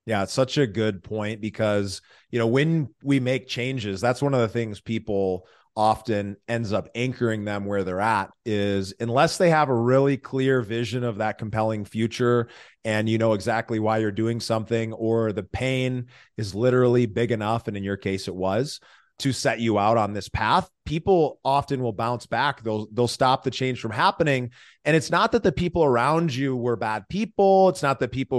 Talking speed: 200 wpm